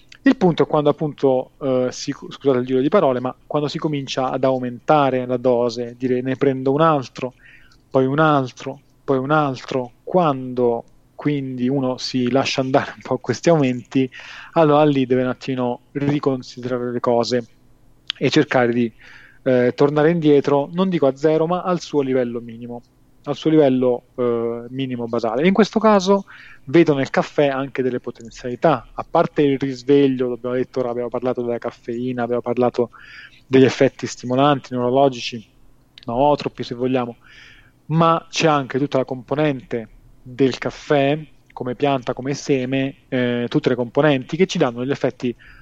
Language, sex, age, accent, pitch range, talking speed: Italian, male, 30-49, native, 125-145 Hz, 160 wpm